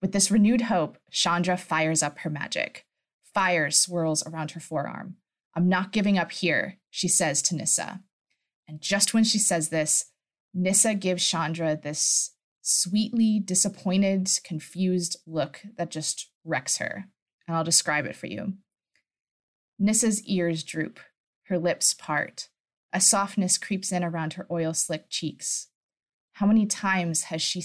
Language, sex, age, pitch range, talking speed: English, female, 20-39, 165-195 Hz, 145 wpm